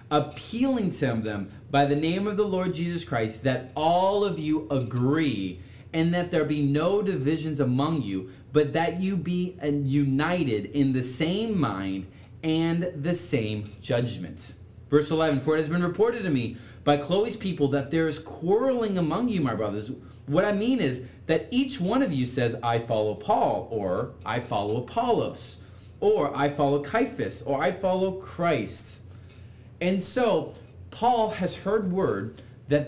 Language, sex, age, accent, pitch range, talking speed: English, male, 30-49, American, 115-170 Hz, 160 wpm